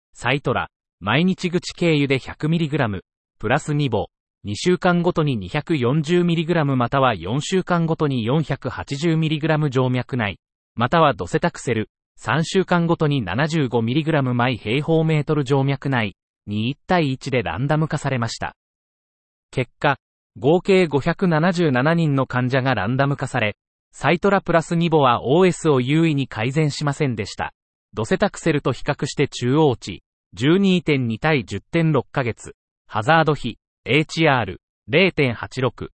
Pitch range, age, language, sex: 125-165 Hz, 30-49, Japanese, male